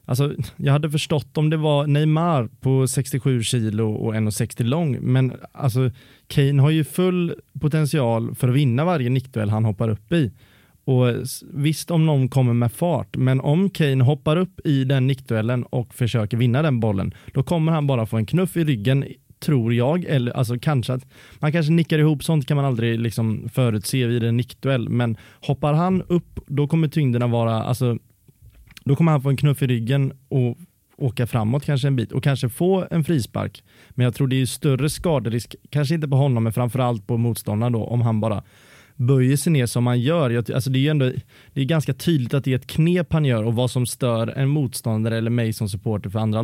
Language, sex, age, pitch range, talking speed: Swedish, male, 30-49, 120-145 Hz, 210 wpm